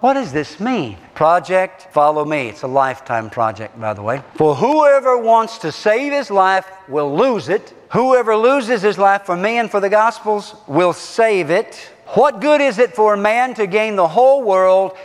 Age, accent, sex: 50-69, American, male